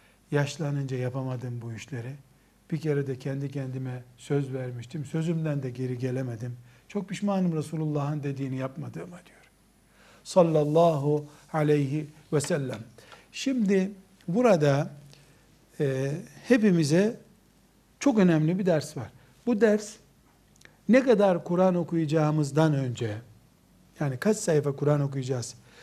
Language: Turkish